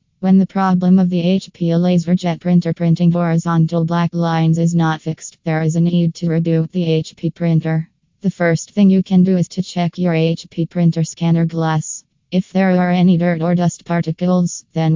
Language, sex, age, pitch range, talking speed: English, female, 20-39, 165-180 Hz, 190 wpm